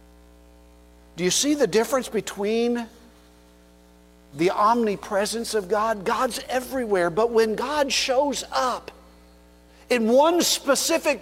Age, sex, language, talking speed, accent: 50-69, male, English, 105 wpm, American